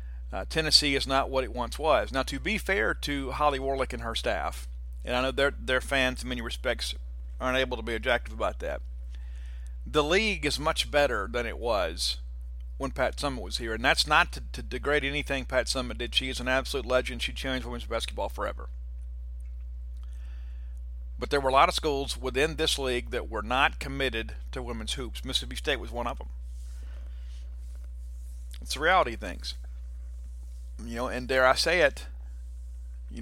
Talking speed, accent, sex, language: 185 wpm, American, male, English